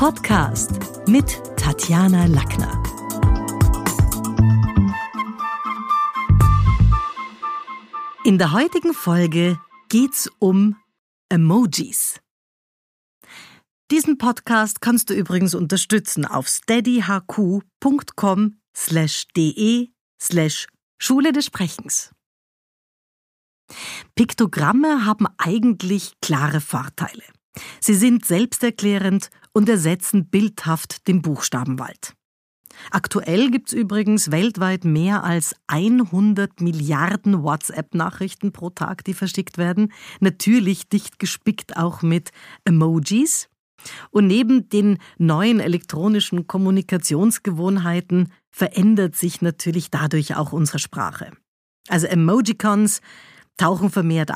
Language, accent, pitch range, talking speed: German, German, 160-215 Hz, 85 wpm